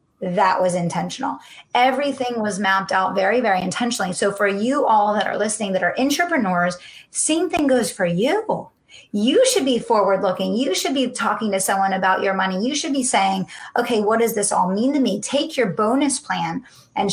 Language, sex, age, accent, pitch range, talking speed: English, female, 30-49, American, 185-235 Hz, 195 wpm